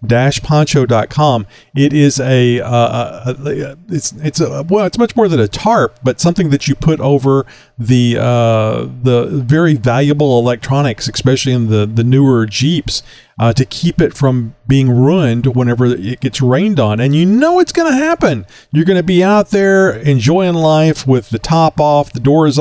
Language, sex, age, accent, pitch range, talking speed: English, male, 40-59, American, 120-150 Hz, 180 wpm